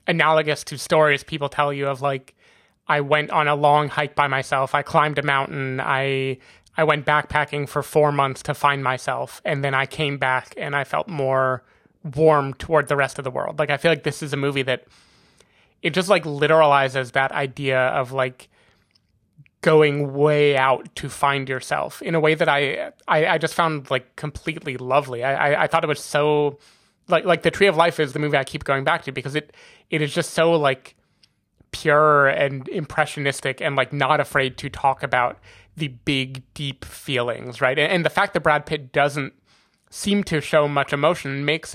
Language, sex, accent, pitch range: English, male, American, 135-155 Hz